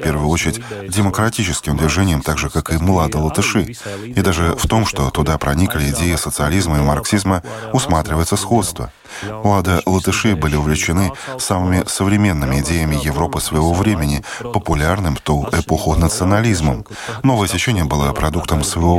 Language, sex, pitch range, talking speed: Russian, male, 80-100 Hz, 140 wpm